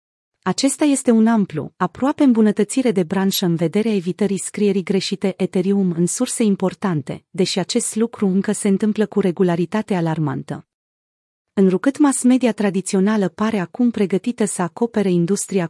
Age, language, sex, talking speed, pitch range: 30-49, Romanian, female, 140 wpm, 180-220 Hz